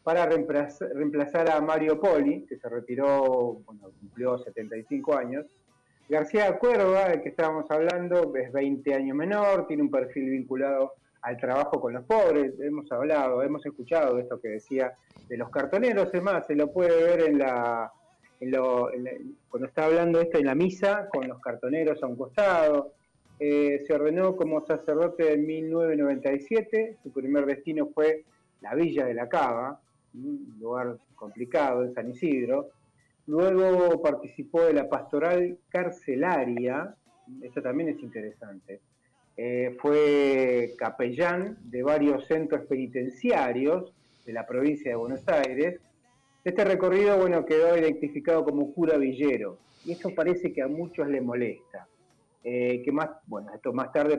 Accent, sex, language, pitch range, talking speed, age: Argentinian, male, Spanish, 130-170 Hz, 150 wpm, 30-49